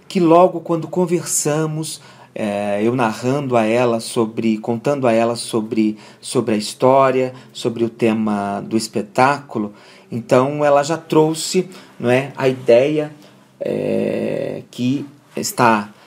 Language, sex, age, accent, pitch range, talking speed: Portuguese, male, 40-59, Brazilian, 115-140 Hz, 125 wpm